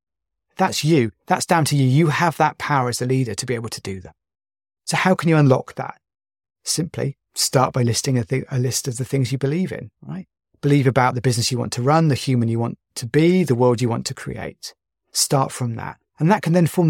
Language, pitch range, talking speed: English, 120-155 Hz, 240 wpm